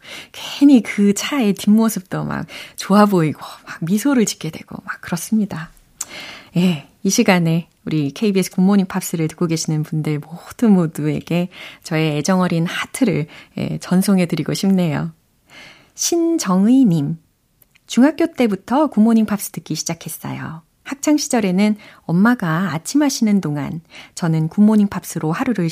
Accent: native